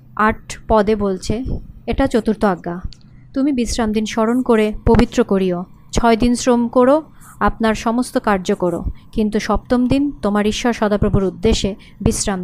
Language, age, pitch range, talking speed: Bengali, 30-49, 200-245 Hz, 135 wpm